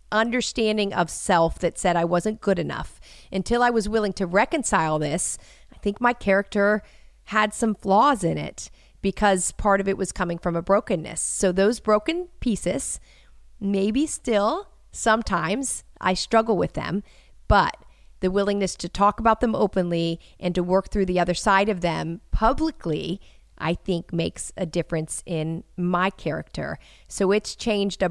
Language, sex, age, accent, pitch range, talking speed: English, female, 40-59, American, 175-210 Hz, 160 wpm